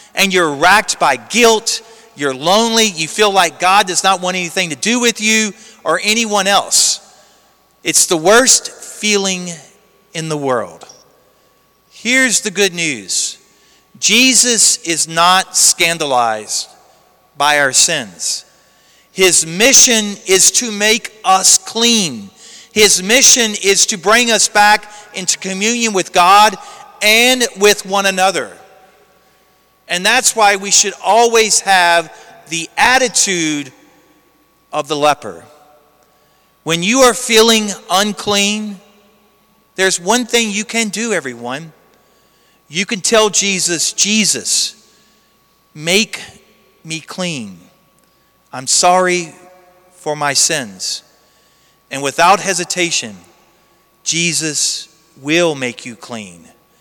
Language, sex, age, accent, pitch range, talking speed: English, male, 40-59, American, 165-220 Hz, 115 wpm